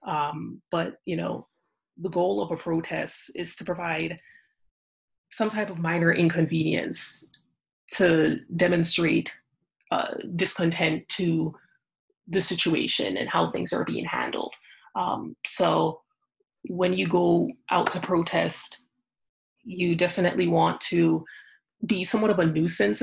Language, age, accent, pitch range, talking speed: English, 30-49, American, 165-190 Hz, 120 wpm